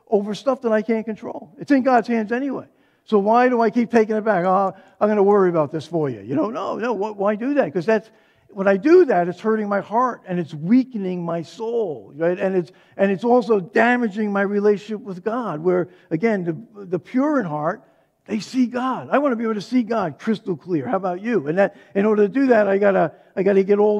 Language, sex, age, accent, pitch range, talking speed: English, male, 50-69, American, 155-220 Hz, 245 wpm